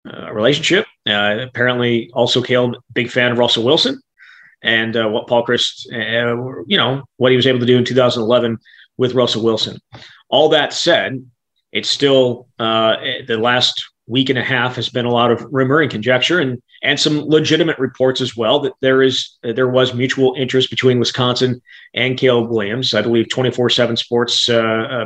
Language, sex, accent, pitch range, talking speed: English, male, American, 115-130 Hz, 180 wpm